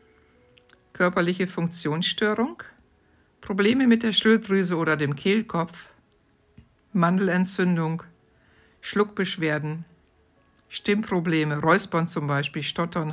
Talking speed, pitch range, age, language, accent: 75 wpm, 150-190 Hz, 60-79, German, German